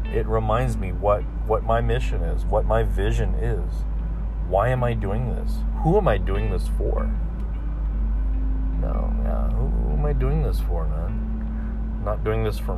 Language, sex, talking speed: English, male, 180 wpm